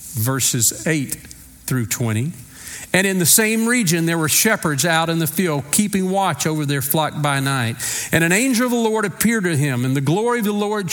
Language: English